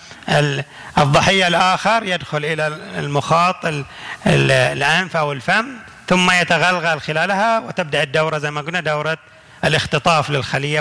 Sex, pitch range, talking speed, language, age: male, 150-185 Hz, 105 wpm, Arabic, 40-59